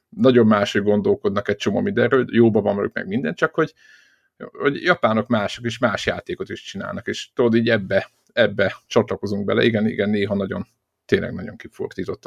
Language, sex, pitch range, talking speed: Hungarian, male, 105-125 Hz, 180 wpm